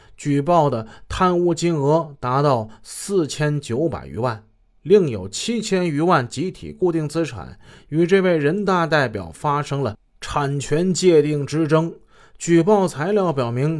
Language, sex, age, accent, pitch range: Chinese, male, 20-39, native, 115-170 Hz